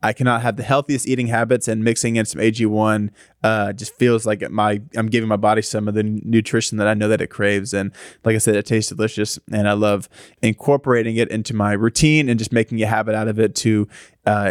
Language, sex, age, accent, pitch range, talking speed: English, male, 20-39, American, 110-130 Hz, 230 wpm